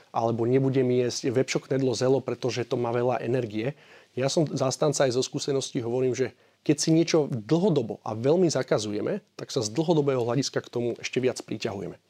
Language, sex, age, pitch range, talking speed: Slovak, male, 30-49, 125-145 Hz, 185 wpm